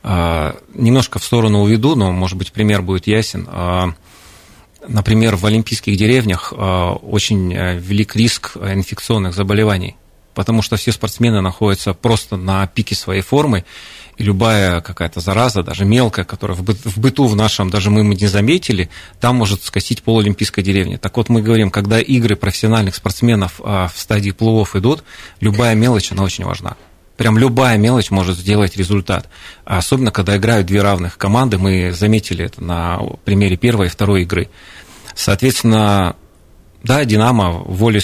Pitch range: 95-115 Hz